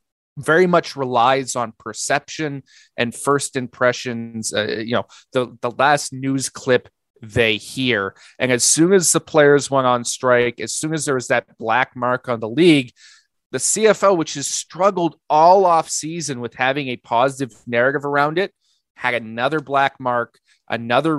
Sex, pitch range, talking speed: male, 125-150 Hz, 160 wpm